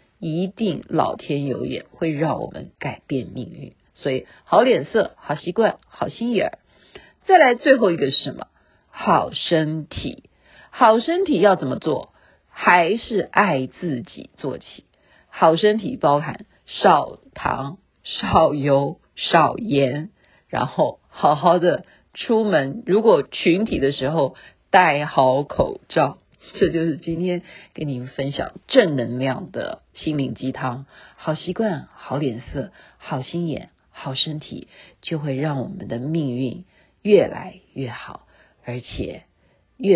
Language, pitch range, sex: Chinese, 140-195 Hz, female